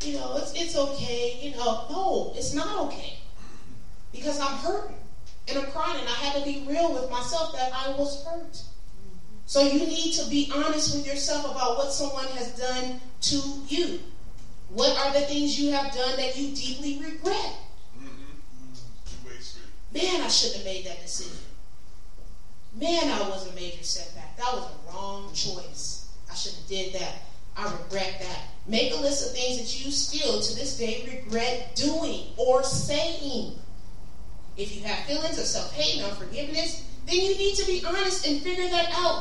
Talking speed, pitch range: 175 wpm, 245-315 Hz